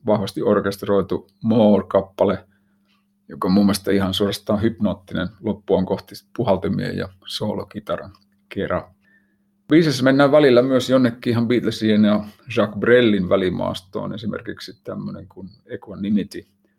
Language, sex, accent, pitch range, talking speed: Finnish, male, native, 100-130 Hz, 105 wpm